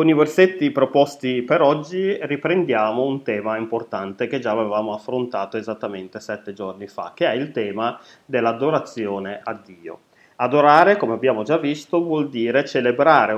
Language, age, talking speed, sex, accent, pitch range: Italian, 30-49, 150 wpm, male, native, 110-140 Hz